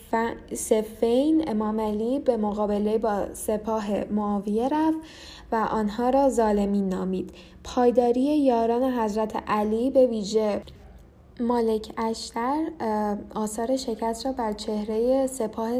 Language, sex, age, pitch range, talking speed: Persian, female, 10-29, 210-245 Hz, 110 wpm